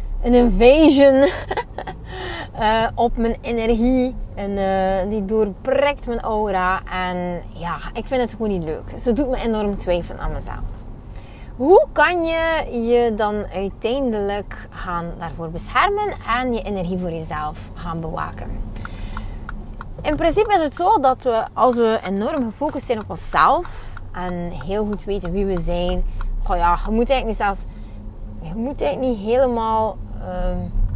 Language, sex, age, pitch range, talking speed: Dutch, female, 30-49, 170-240 Hz, 150 wpm